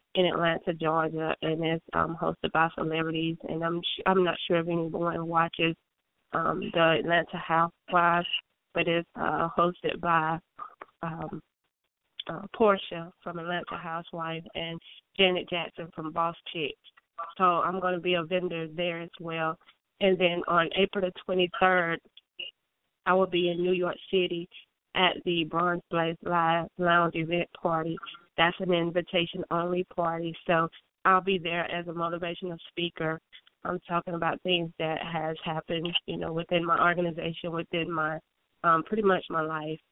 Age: 20-39